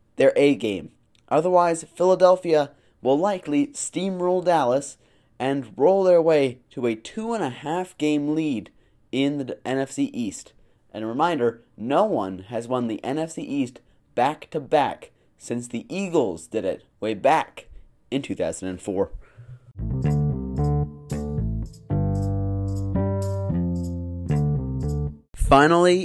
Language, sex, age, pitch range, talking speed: English, male, 20-39, 110-170 Hz, 110 wpm